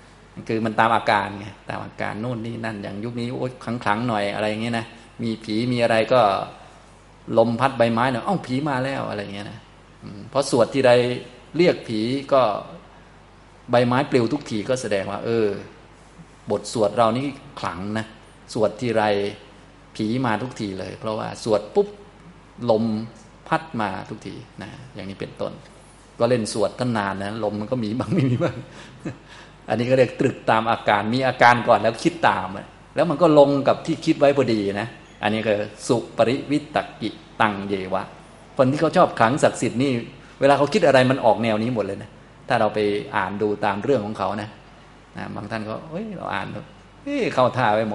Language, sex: Thai, male